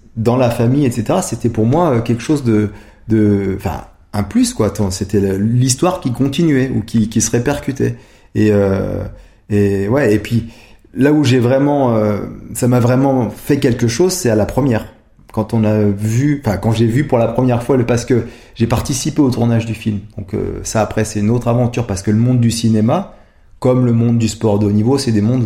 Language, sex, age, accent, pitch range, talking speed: French, male, 30-49, French, 105-125 Hz, 215 wpm